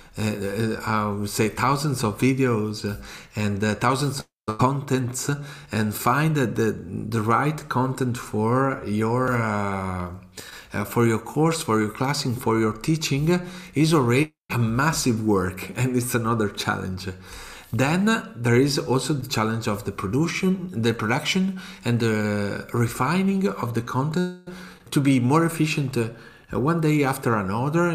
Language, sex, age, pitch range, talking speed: English, male, 40-59, 105-140 Hz, 145 wpm